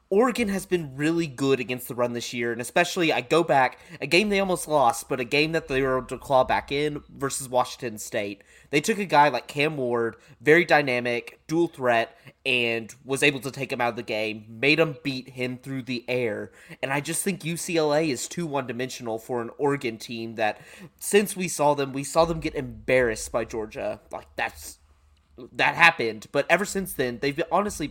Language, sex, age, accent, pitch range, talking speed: English, male, 20-39, American, 120-165 Hz, 205 wpm